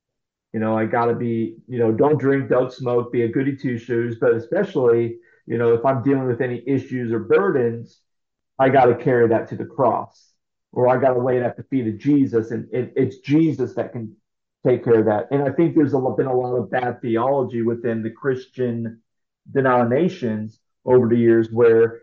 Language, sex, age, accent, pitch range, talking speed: English, male, 40-59, American, 115-135 Hz, 200 wpm